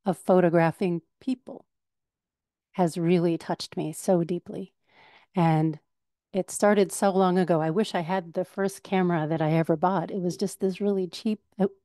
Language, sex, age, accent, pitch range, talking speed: English, female, 40-59, American, 170-200 Hz, 160 wpm